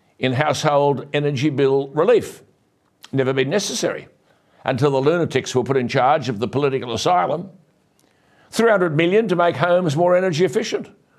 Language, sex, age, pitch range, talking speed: English, male, 60-79, 145-195 Hz, 145 wpm